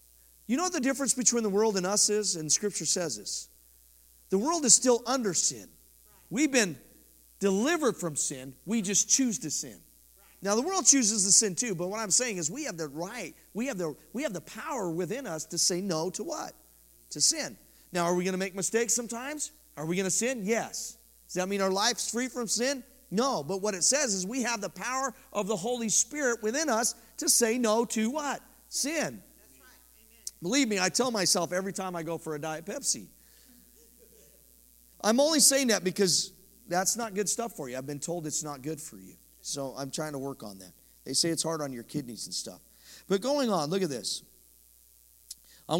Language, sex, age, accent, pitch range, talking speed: English, male, 40-59, American, 155-240 Hz, 210 wpm